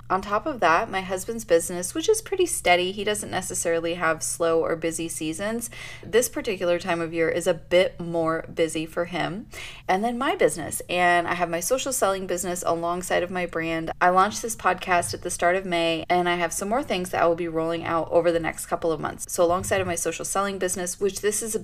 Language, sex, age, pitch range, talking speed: English, female, 20-39, 170-205 Hz, 235 wpm